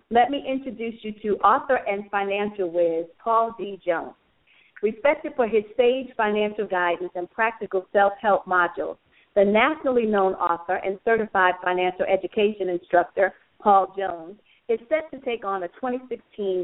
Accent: American